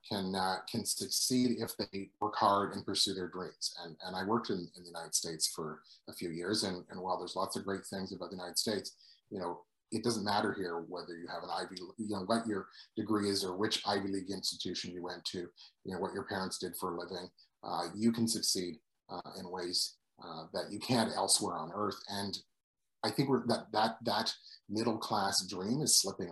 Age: 30-49